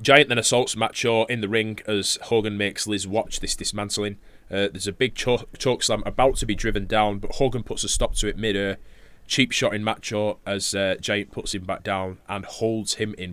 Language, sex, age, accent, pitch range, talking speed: English, male, 20-39, British, 100-115 Hz, 210 wpm